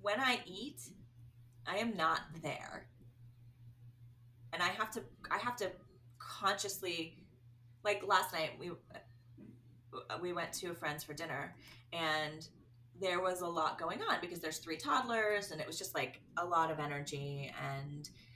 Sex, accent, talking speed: female, American, 155 wpm